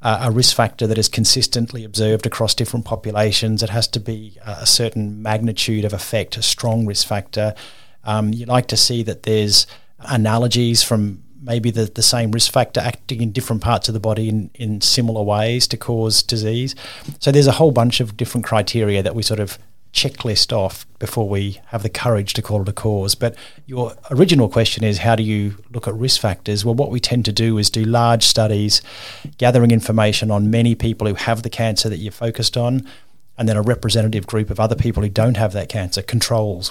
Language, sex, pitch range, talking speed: English, male, 105-120 Hz, 205 wpm